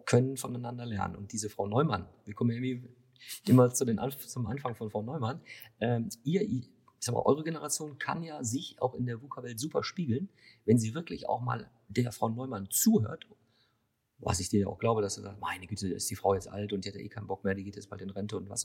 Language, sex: German, male